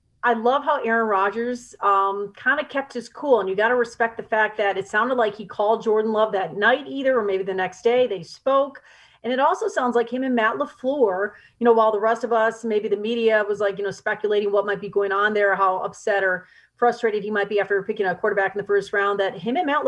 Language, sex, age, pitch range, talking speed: English, female, 40-59, 210-260 Hz, 255 wpm